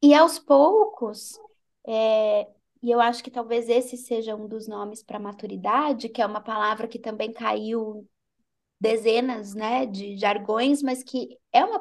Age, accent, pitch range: 20-39, Brazilian, 220-280 Hz